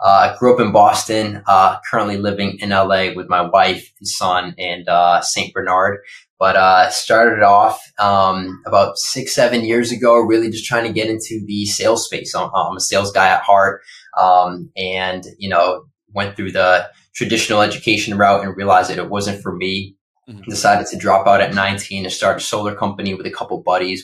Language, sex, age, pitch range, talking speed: English, male, 20-39, 95-110 Hz, 195 wpm